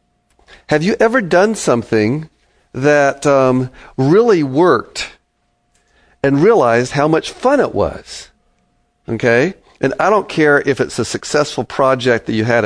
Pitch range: 115-155 Hz